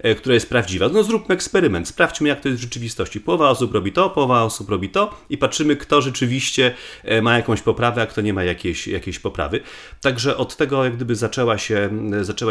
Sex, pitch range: male, 105-140 Hz